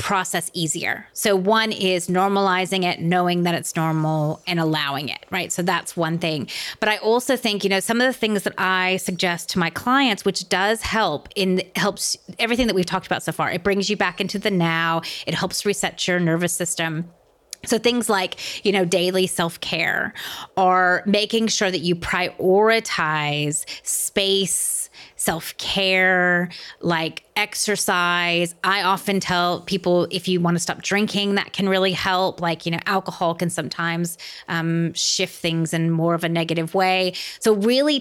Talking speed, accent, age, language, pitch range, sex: 170 wpm, American, 30-49, English, 170-200 Hz, female